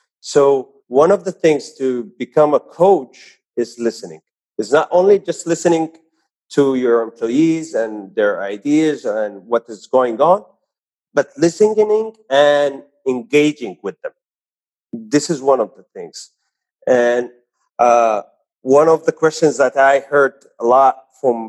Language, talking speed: English, 140 wpm